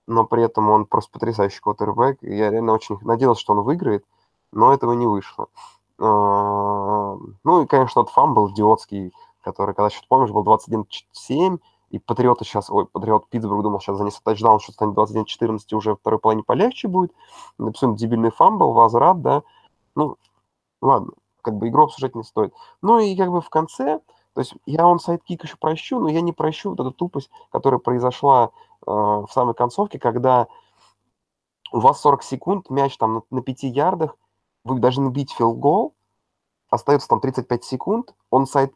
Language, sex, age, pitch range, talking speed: Russian, male, 20-39, 110-155 Hz, 170 wpm